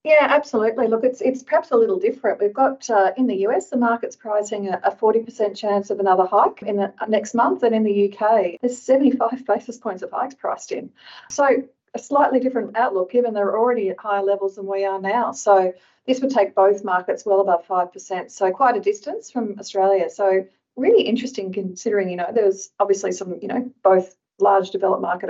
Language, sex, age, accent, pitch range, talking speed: English, female, 40-59, Australian, 190-240 Hz, 200 wpm